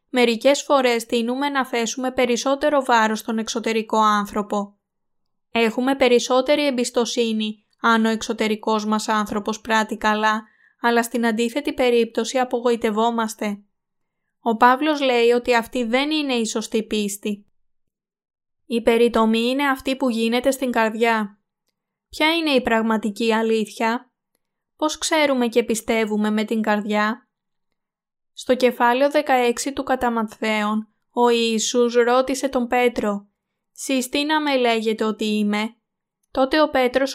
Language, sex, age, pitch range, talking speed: Greek, female, 20-39, 220-255 Hz, 120 wpm